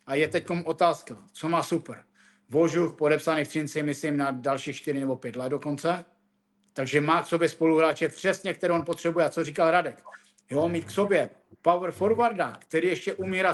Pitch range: 145-175 Hz